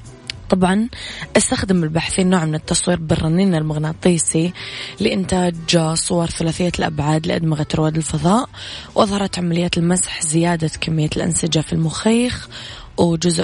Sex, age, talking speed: female, 20-39, 105 wpm